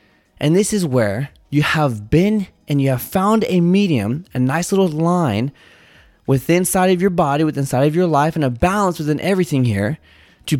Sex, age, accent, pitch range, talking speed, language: male, 20-39, American, 125-170 Hz, 190 wpm, English